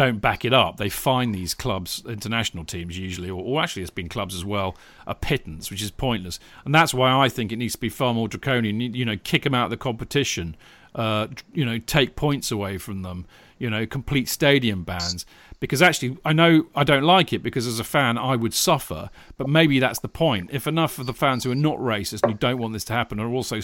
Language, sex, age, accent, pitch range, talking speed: English, male, 40-59, British, 110-140 Hz, 240 wpm